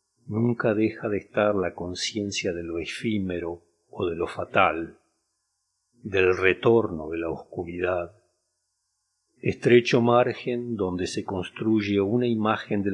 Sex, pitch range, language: male, 90-120 Hz, Spanish